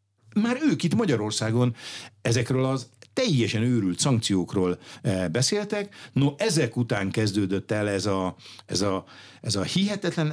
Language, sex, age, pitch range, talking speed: Hungarian, male, 60-79, 95-150 Hz, 110 wpm